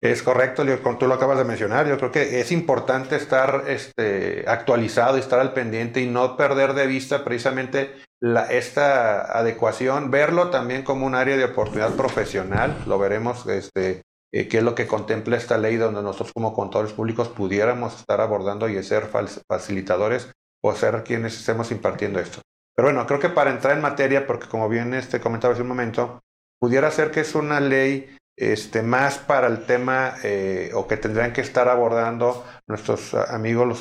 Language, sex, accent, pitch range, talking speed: Spanish, male, Mexican, 115-135 Hz, 170 wpm